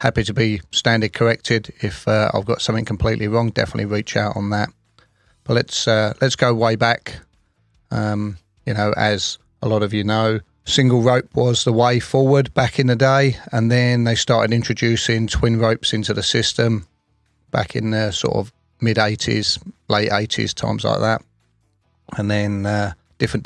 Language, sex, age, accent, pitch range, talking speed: English, male, 30-49, British, 100-115 Hz, 170 wpm